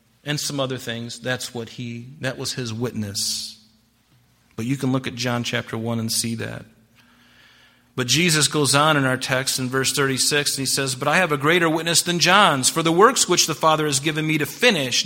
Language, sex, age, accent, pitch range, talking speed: English, male, 40-59, American, 120-170 Hz, 215 wpm